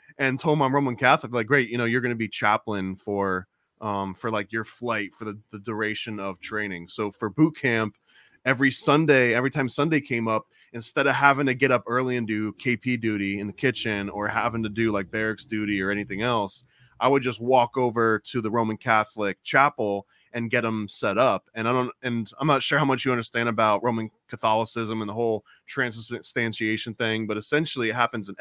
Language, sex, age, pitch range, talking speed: English, male, 20-39, 110-140 Hz, 210 wpm